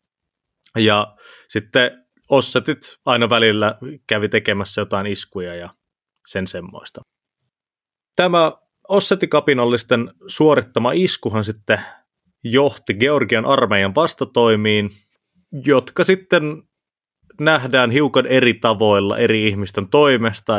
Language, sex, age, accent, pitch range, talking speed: Finnish, male, 30-49, native, 105-145 Hz, 85 wpm